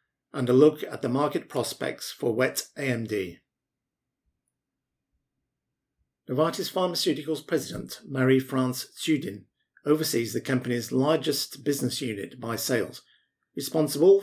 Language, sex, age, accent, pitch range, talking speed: English, male, 50-69, British, 120-145 Hz, 100 wpm